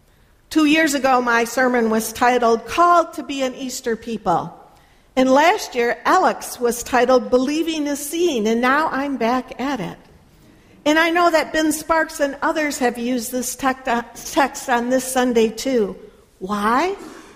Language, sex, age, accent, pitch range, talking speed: English, female, 60-79, American, 225-290 Hz, 155 wpm